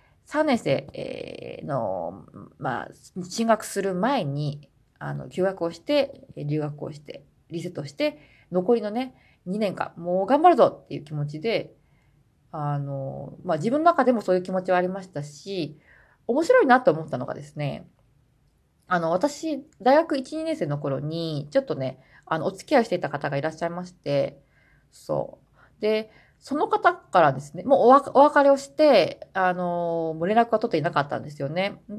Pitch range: 150-245 Hz